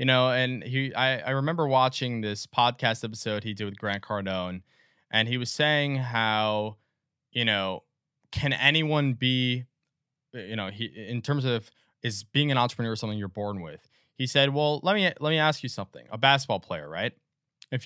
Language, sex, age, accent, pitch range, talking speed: English, male, 20-39, American, 110-145 Hz, 180 wpm